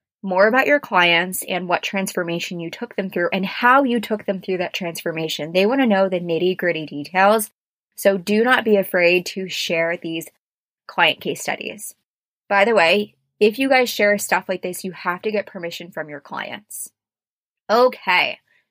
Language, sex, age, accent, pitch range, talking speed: English, female, 20-39, American, 175-220 Hz, 185 wpm